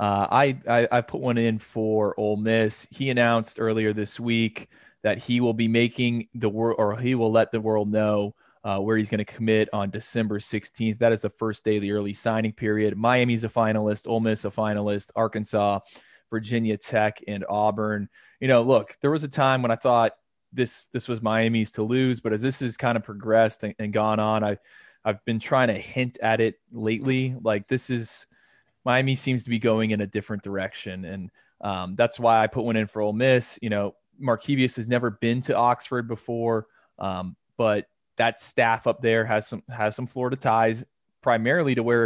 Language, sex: English, male